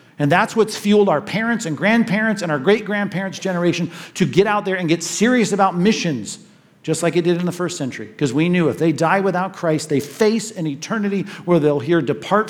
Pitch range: 145-185 Hz